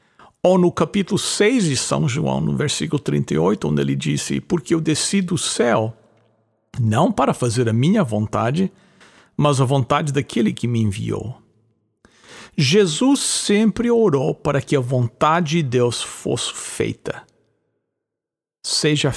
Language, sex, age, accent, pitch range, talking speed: English, male, 60-79, Brazilian, 135-200 Hz, 135 wpm